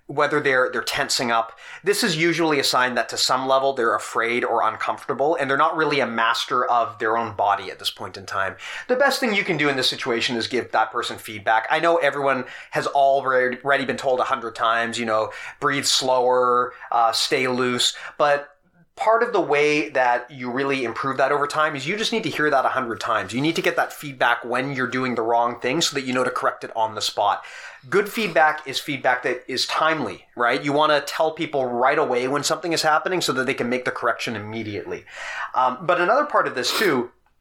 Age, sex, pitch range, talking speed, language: 30-49, male, 125-170 Hz, 230 wpm, English